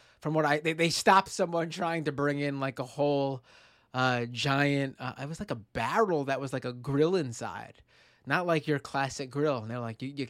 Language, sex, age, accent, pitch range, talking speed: English, male, 20-39, American, 125-155 Hz, 220 wpm